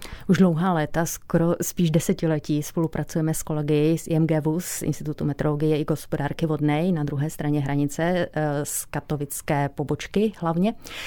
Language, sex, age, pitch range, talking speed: Czech, female, 30-49, 150-165 Hz, 135 wpm